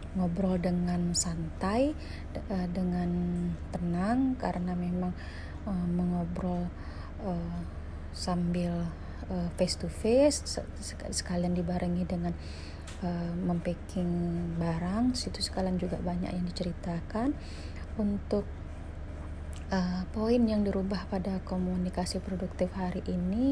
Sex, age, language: female, 30-49, Indonesian